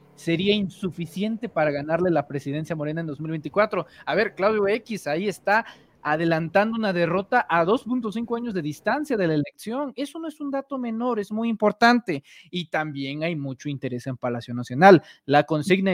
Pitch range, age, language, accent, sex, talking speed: 155-220 Hz, 30-49, Spanish, Mexican, male, 170 wpm